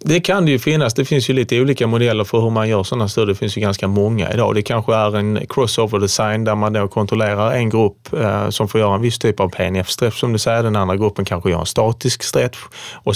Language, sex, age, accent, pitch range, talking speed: Swedish, male, 20-39, Norwegian, 100-120 Hz, 250 wpm